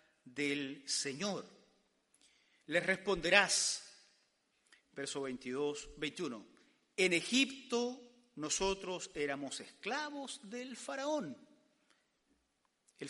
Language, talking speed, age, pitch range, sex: Spanish, 70 wpm, 40-59, 140-205 Hz, male